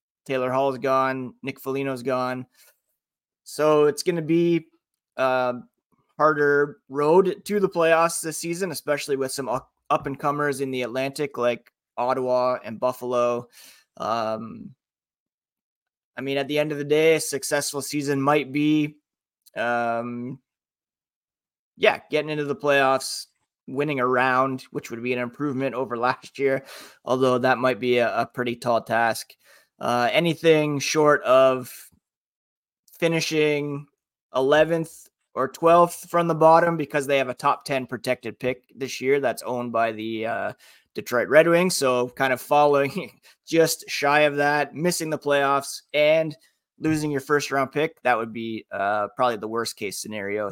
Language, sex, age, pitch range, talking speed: English, male, 20-39, 125-150 Hz, 155 wpm